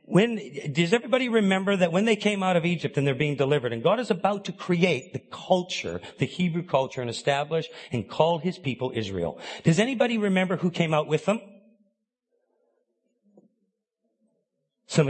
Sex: male